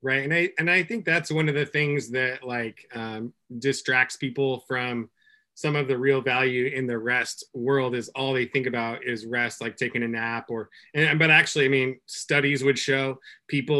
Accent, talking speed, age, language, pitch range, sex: American, 205 wpm, 20-39, English, 130-155 Hz, male